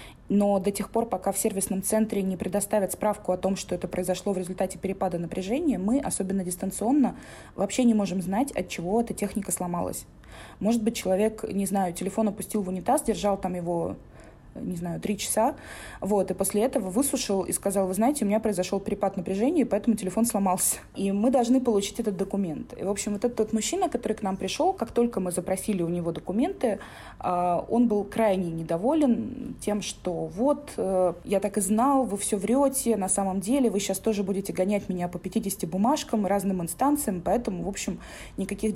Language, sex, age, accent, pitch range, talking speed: Russian, female, 20-39, native, 185-235 Hz, 185 wpm